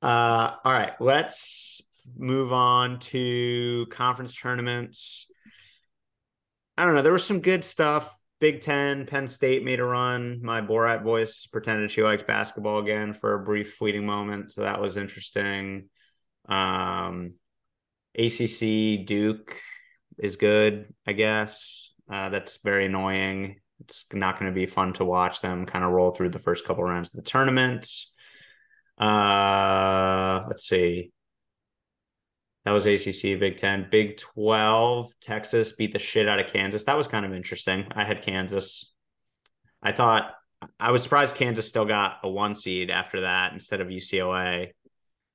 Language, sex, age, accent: English, male, 30-49, American